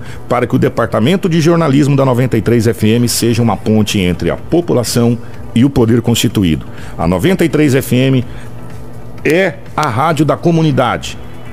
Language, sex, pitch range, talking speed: Portuguese, male, 120-160 Hz, 130 wpm